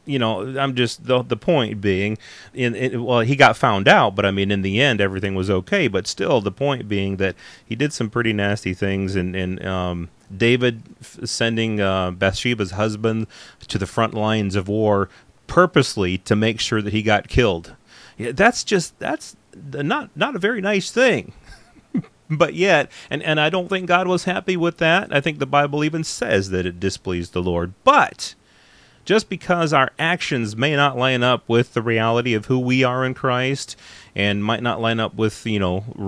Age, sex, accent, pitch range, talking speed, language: 30-49, male, American, 100-135 Hz, 200 wpm, English